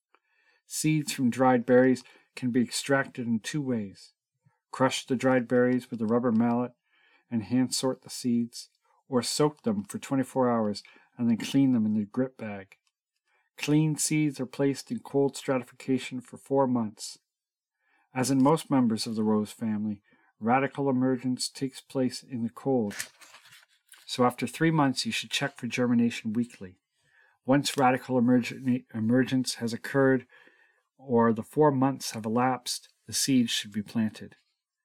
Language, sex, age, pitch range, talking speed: English, male, 40-59, 120-140 Hz, 150 wpm